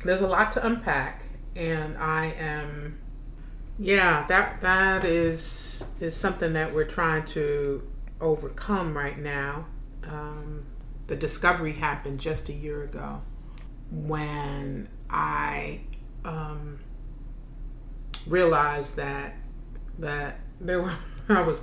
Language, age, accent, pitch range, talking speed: English, 40-59, American, 140-165 Hz, 110 wpm